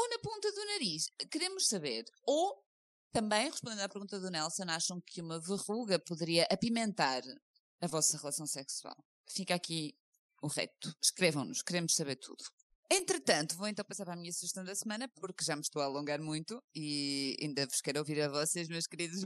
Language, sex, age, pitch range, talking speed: Portuguese, female, 20-39, 160-215 Hz, 180 wpm